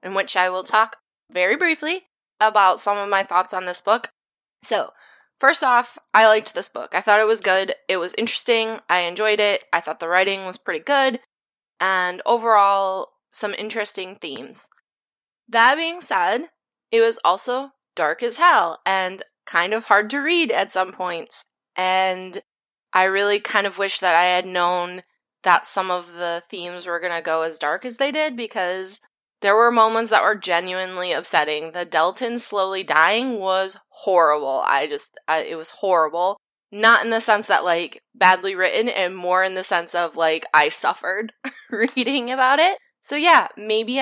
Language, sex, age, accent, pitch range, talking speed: English, female, 10-29, American, 180-230 Hz, 175 wpm